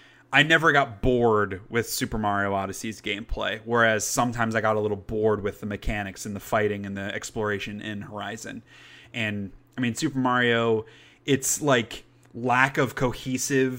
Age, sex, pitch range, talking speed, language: 20-39, male, 115-140 Hz, 160 wpm, English